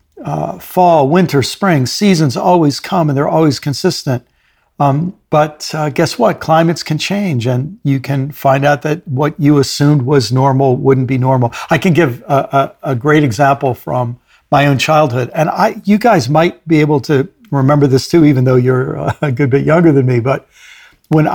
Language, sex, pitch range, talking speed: English, male, 135-165 Hz, 190 wpm